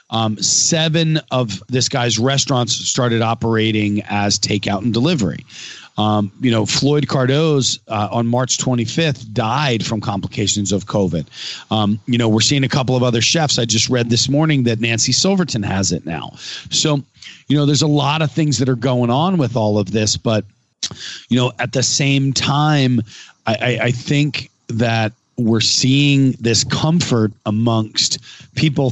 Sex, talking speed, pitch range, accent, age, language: male, 170 wpm, 105-135 Hz, American, 40-59, English